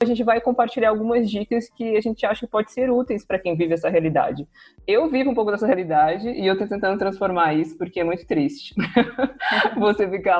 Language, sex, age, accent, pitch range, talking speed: Portuguese, female, 20-39, Brazilian, 170-210 Hz, 215 wpm